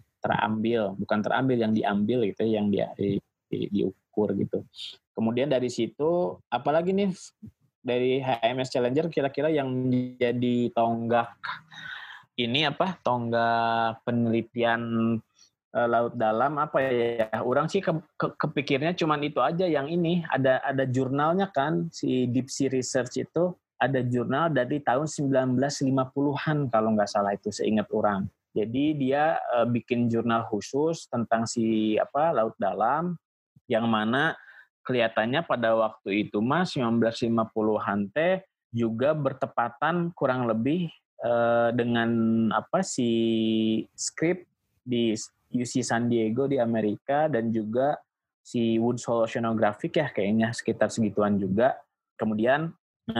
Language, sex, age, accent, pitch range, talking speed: Indonesian, male, 20-39, native, 115-140 Hz, 125 wpm